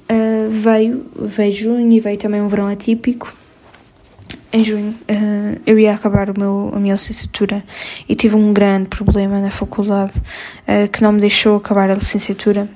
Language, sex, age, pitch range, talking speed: Portuguese, female, 10-29, 200-225 Hz, 170 wpm